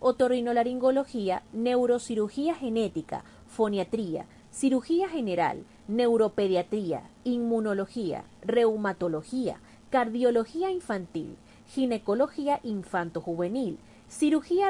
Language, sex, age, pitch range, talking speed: Spanish, female, 30-49, 195-285 Hz, 55 wpm